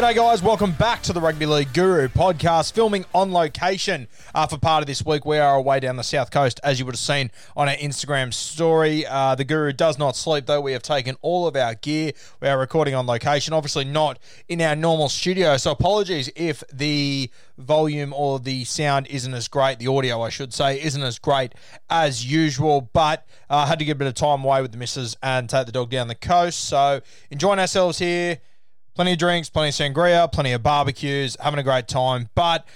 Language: English